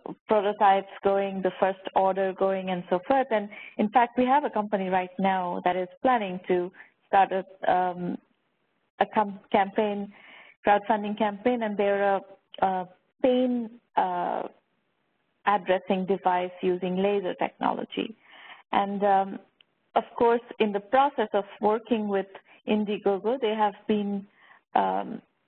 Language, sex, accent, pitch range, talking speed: English, female, Indian, 195-225 Hz, 125 wpm